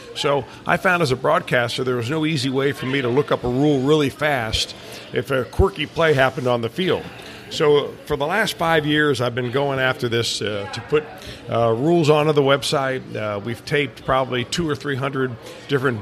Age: 50-69